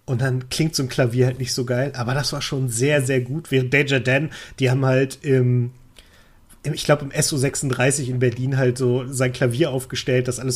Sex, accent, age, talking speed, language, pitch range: male, German, 30-49, 215 wpm, German, 125-145 Hz